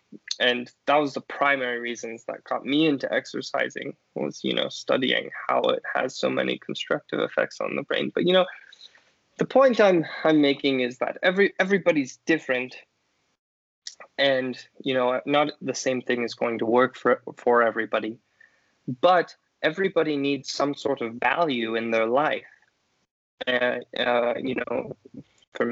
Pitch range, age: 125-170 Hz, 20-39